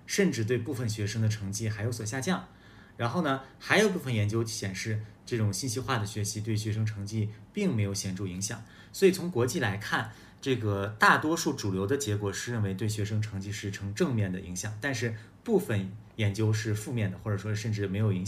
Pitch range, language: 100-125 Hz, Chinese